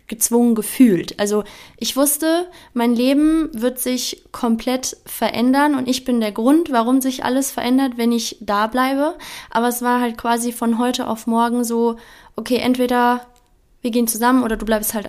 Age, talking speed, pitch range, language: 20-39, 170 wpm, 215-250 Hz, German